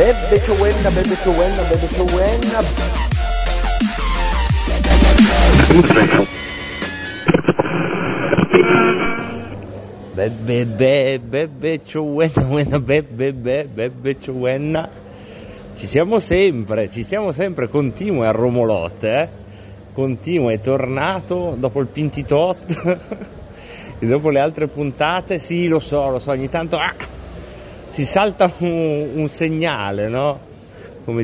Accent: native